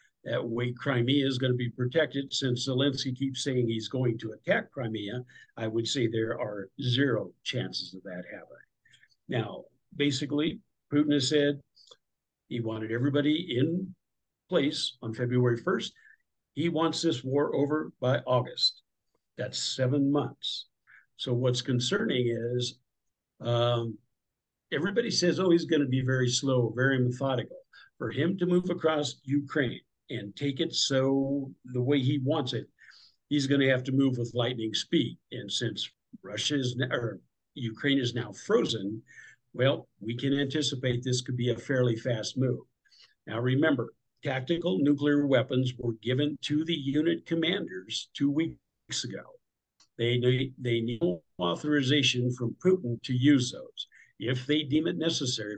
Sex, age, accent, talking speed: male, 60-79, American, 150 wpm